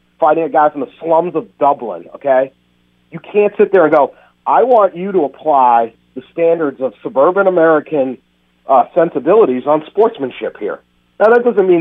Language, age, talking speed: English, 50-69, 175 wpm